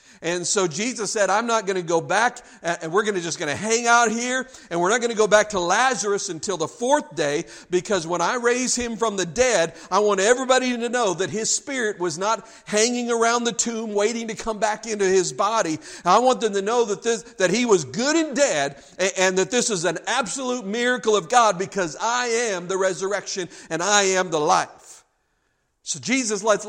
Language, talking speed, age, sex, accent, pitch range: English, 220 wpm, 50-69, male, American, 165-220 Hz